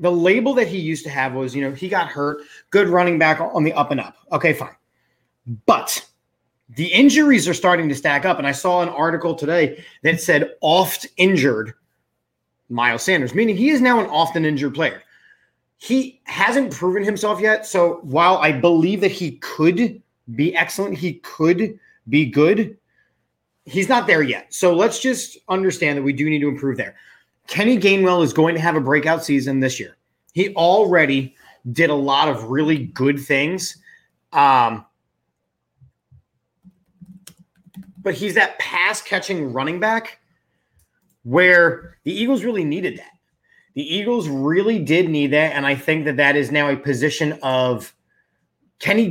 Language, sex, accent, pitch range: English, male, American, 145-195 Hz